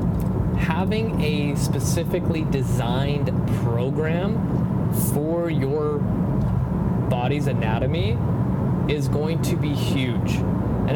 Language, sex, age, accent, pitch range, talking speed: English, male, 30-49, American, 120-140 Hz, 80 wpm